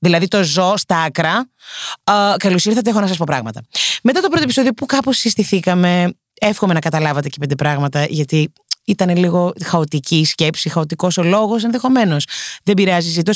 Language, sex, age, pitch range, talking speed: Greek, female, 30-49, 160-225 Hz, 170 wpm